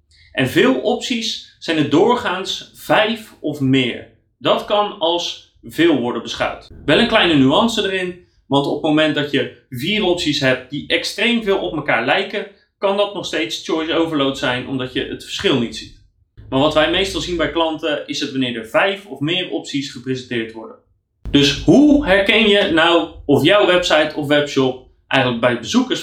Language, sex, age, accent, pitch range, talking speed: Dutch, male, 30-49, Dutch, 130-205 Hz, 180 wpm